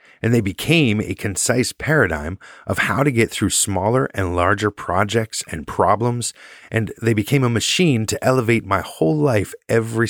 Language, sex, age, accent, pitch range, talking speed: English, male, 30-49, American, 100-125 Hz, 165 wpm